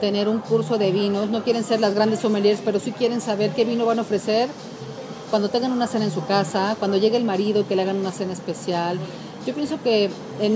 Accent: Mexican